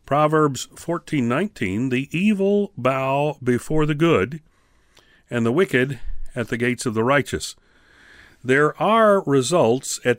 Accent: American